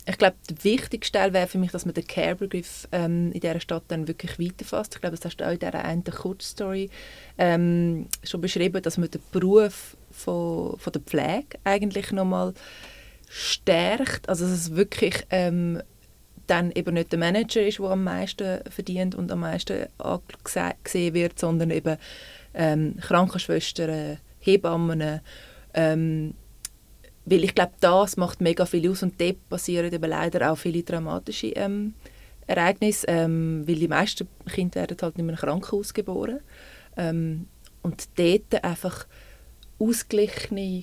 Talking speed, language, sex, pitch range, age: 155 wpm, English, female, 170-195 Hz, 20-39